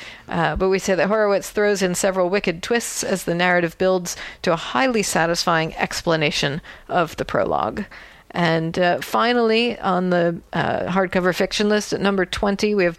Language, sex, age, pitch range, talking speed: English, female, 40-59, 170-200 Hz, 170 wpm